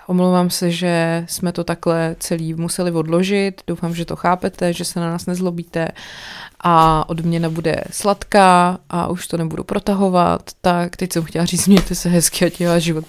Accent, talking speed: native, 175 wpm